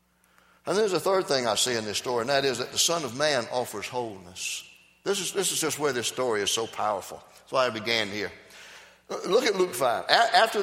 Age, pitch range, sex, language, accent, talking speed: 60-79, 110-150 Hz, male, English, American, 230 wpm